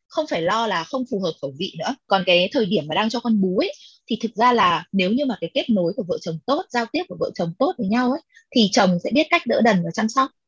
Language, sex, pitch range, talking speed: Vietnamese, female, 185-265 Hz, 290 wpm